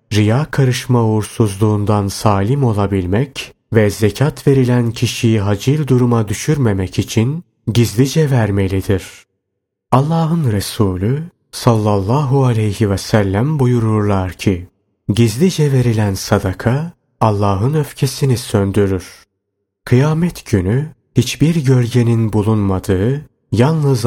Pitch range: 105-130 Hz